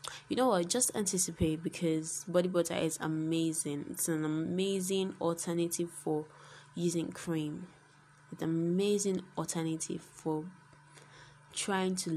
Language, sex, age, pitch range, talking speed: English, female, 10-29, 155-175 Hz, 120 wpm